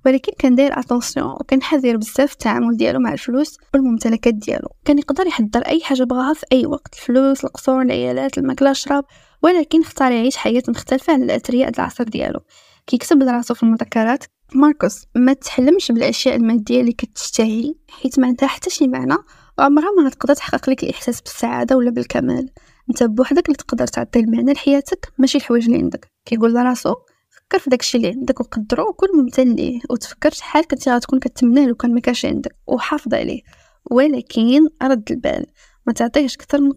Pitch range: 240-285 Hz